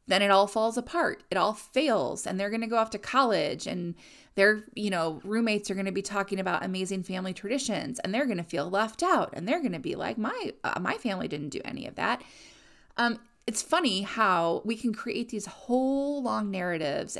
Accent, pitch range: American, 195-250 Hz